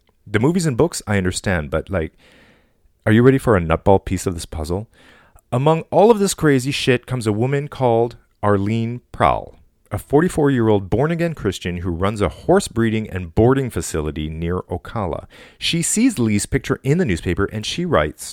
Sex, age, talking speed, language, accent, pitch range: male, 40-59, 175 wpm, English, American, 90-135 Hz